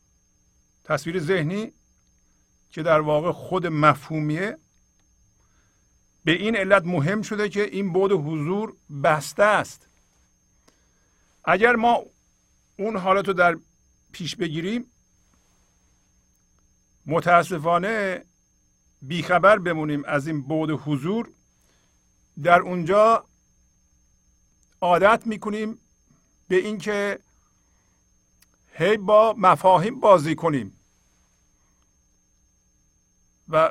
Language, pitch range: Persian, 135-195 Hz